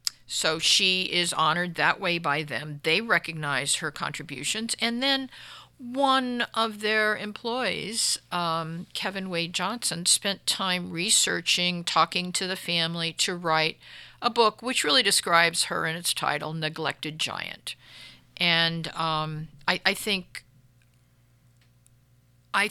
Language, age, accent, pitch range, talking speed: English, 50-69, American, 160-205 Hz, 125 wpm